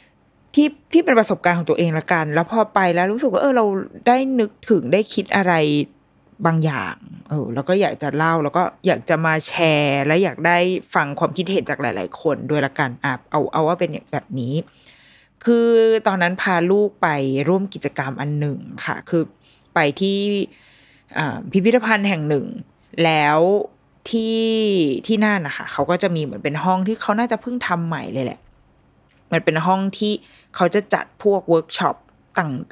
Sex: female